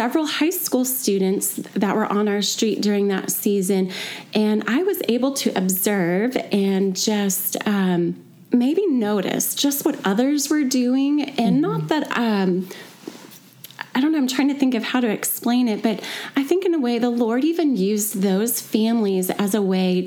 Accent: American